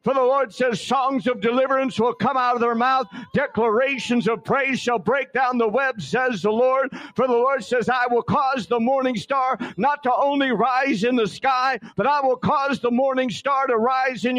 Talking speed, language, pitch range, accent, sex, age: 215 wpm, English, 250-290 Hz, American, male, 50-69